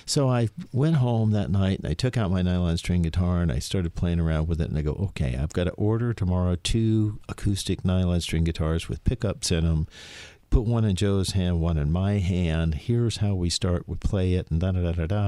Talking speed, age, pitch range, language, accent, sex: 225 wpm, 50-69, 90-115 Hz, English, American, male